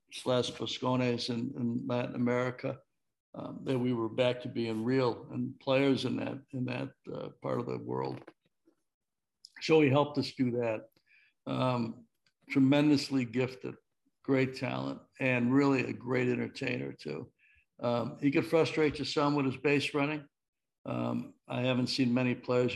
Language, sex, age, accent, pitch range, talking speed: English, male, 60-79, American, 120-135 Hz, 150 wpm